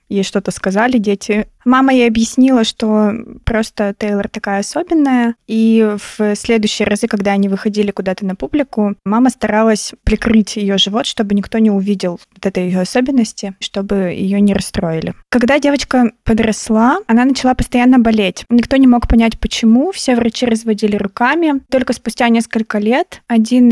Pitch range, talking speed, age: 205-245 Hz, 150 wpm, 20-39